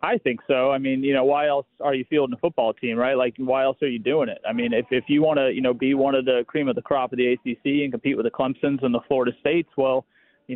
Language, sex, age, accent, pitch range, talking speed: English, male, 30-49, American, 130-155 Hz, 305 wpm